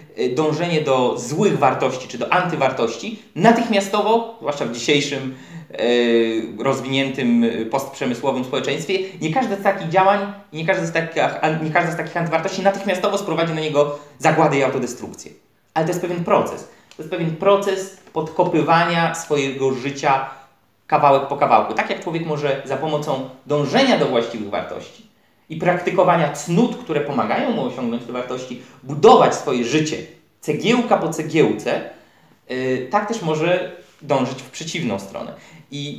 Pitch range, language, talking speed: 140-190 Hz, Polish, 135 wpm